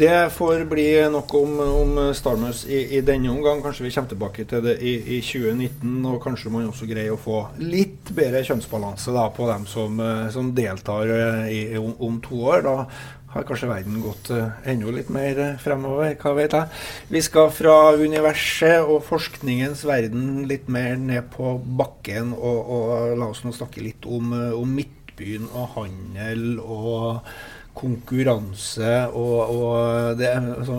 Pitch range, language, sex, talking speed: 115-140 Hz, English, male, 160 wpm